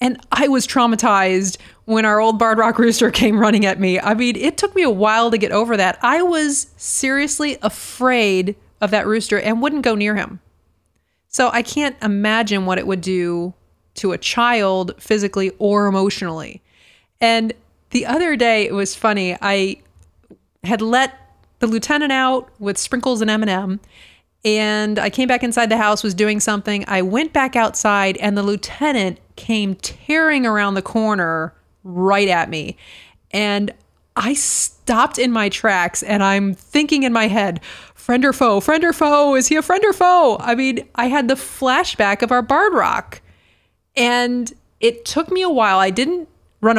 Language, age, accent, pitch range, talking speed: English, 30-49, American, 200-255 Hz, 175 wpm